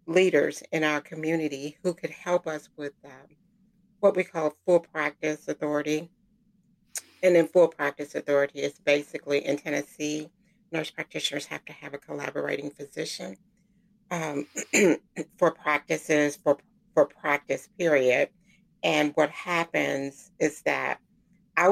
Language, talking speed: English, 125 wpm